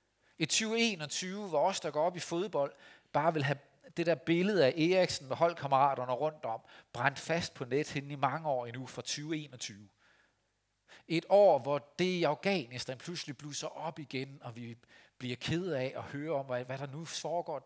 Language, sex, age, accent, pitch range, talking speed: Danish, male, 40-59, native, 125-165 Hz, 180 wpm